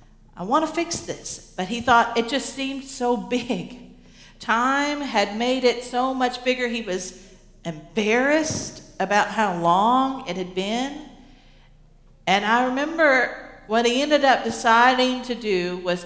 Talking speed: 150 wpm